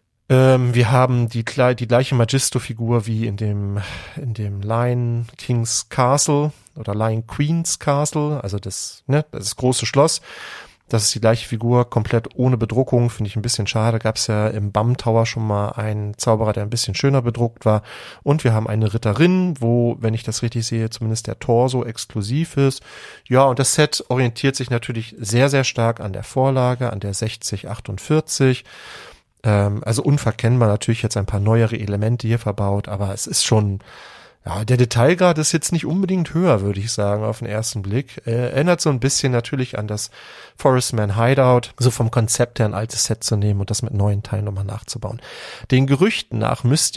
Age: 40-59